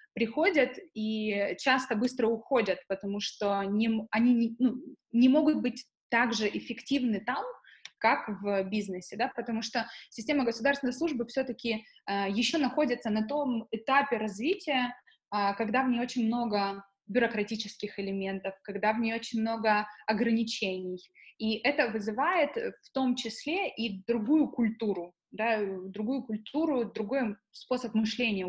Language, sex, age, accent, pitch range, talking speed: Russian, female, 20-39, native, 205-255 Hz, 130 wpm